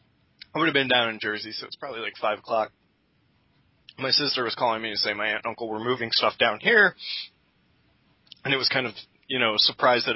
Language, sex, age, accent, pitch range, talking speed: English, male, 20-39, American, 110-125 Hz, 225 wpm